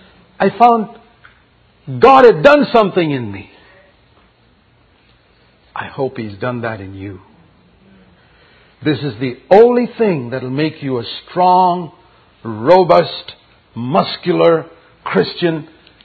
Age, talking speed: 50-69, 110 wpm